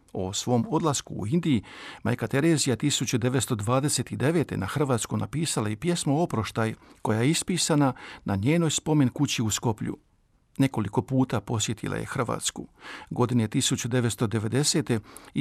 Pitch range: 110-155 Hz